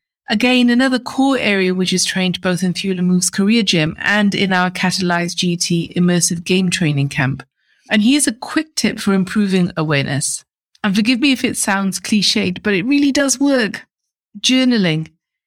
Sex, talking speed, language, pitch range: female, 165 wpm, English, 170-215 Hz